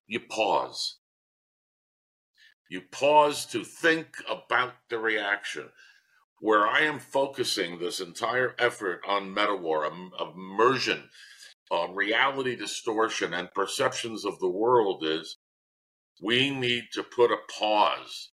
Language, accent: English, American